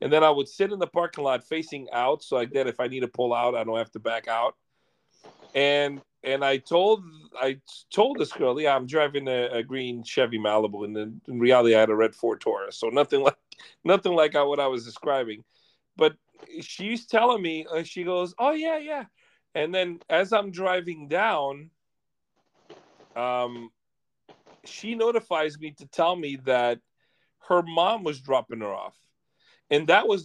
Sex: male